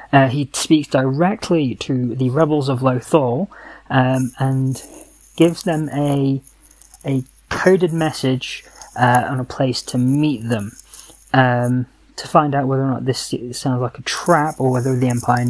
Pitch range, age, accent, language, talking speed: 120-140 Hz, 20-39, British, English, 155 wpm